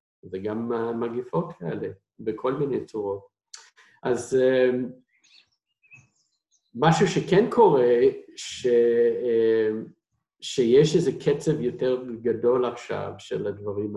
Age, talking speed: 50-69, 90 wpm